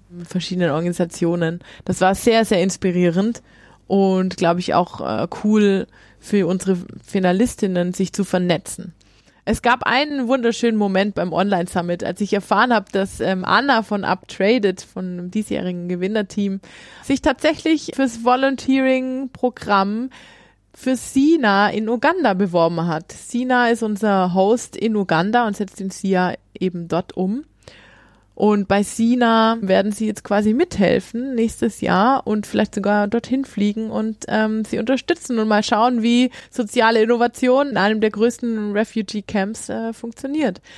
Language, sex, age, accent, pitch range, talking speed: German, female, 20-39, German, 185-235 Hz, 135 wpm